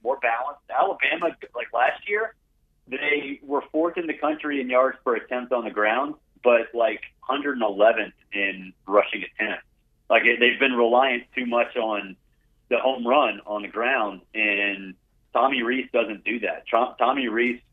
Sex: male